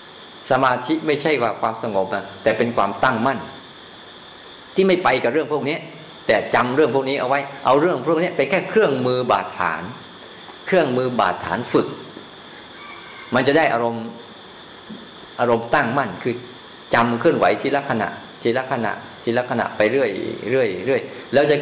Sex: male